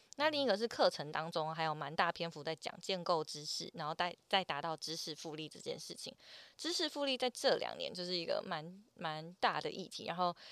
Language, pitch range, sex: Chinese, 155-200 Hz, female